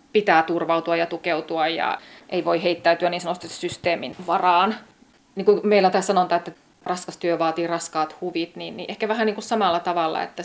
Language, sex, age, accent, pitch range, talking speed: Finnish, female, 30-49, native, 170-195 Hz, 170 wpm